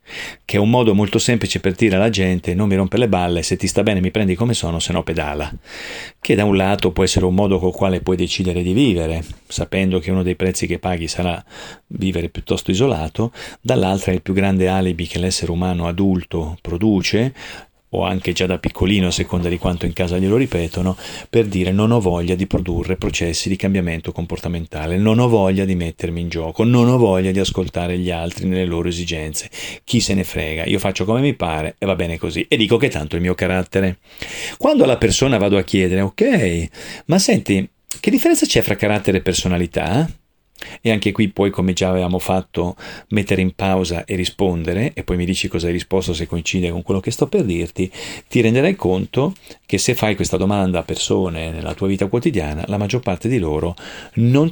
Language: Italian